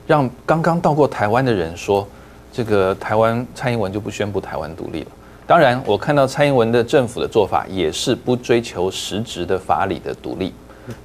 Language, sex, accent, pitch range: Chinese, male, native, 95-130 Hz